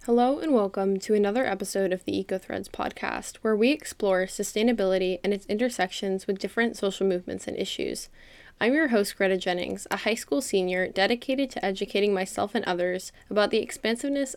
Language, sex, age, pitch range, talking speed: English, female, 10-29, 190-235 Hz, 170 wpm